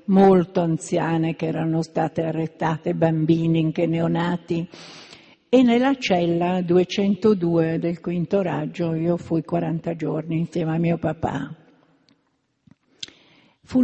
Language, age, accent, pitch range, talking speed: Italian, 60-79, native, 170-235 Hz, 110 wpm